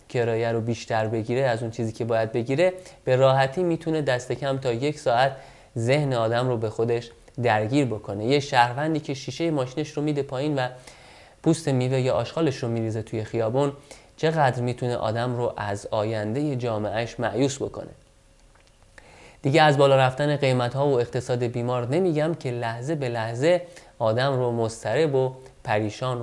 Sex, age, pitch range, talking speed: male, 30-49, 115-145 Hz, 155 wpm